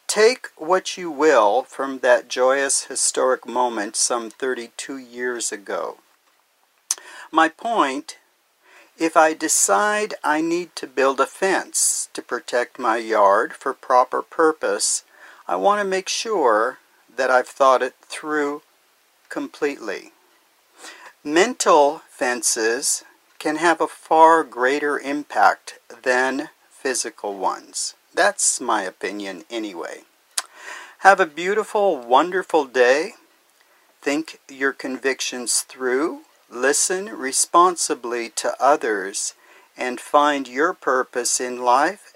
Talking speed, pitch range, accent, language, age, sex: 110 wpm, 125-195 Hz, American, English, 50-69, male